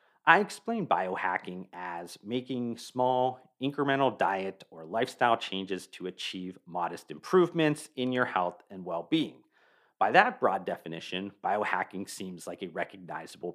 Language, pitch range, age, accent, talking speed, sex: English, 95-150 Hz, 30-49, American, 130 wpm, male